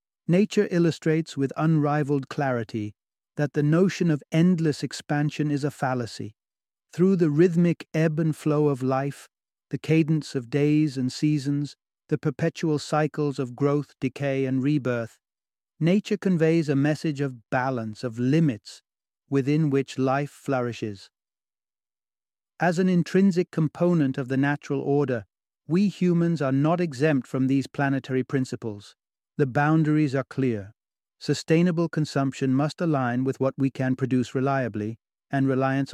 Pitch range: 130-150 Hz